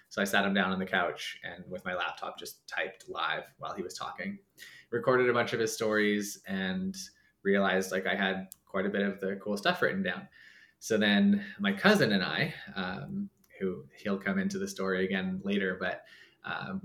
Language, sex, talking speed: English, male, 200 wpm